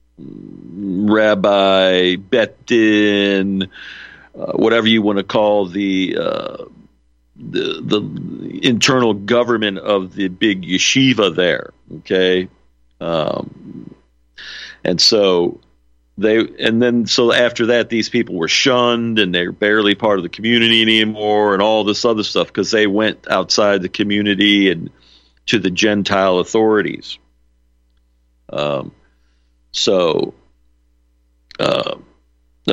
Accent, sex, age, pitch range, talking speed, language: American, male, 50-69, 95-115 Hz, 110 wpm, English